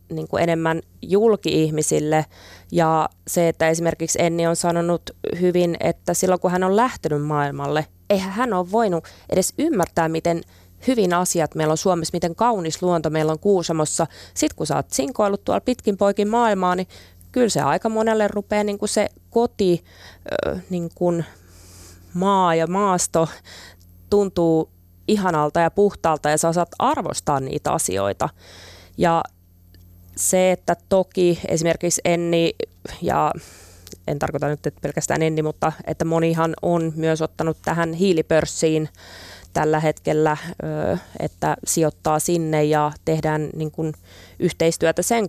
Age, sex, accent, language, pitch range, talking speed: 20-39, female, native, Finnish, 150-185 Hz, 135 wpm